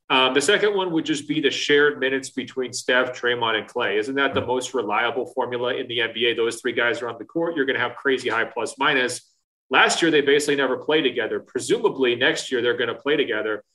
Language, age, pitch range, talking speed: English, 30-49, 125-155 Hz, 230 wpm